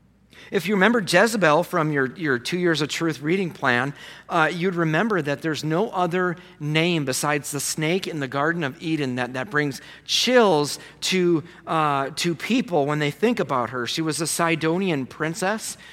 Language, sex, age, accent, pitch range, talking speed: English, male, 40-59, American, 130-170 Hz, 175 wpm